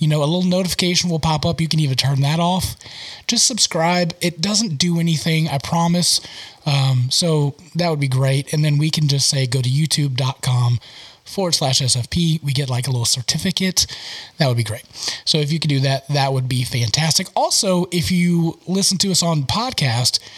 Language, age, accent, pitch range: English, 20-39, American, 135-175 Hz